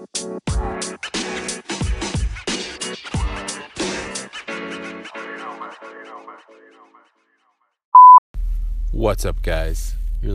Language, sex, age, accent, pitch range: English, male, 20-39, American, 70-100 Hz